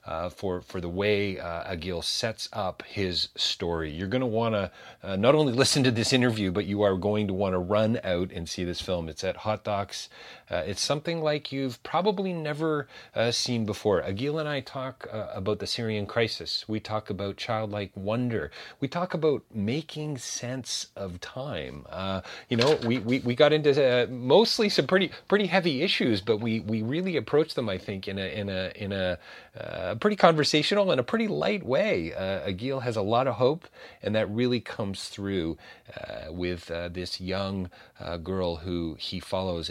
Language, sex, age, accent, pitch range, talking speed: English, male, 40-59, American, 90-120 Hz, 195 wpm